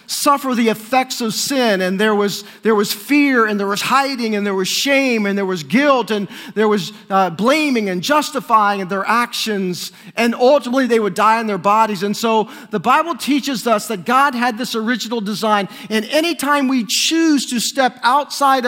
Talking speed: 190 wpm